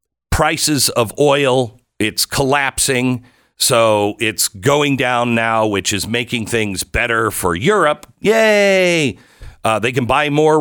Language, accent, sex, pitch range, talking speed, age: English, American, male, 110-170 Hz, 130 wpm, 50-69